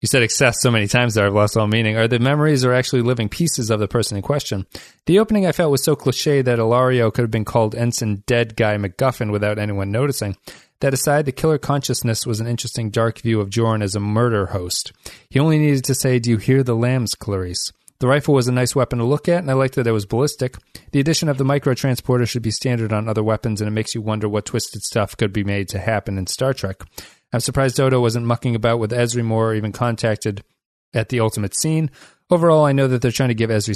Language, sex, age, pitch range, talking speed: English, male, 30-49, 110-135 Hz, 245 wpm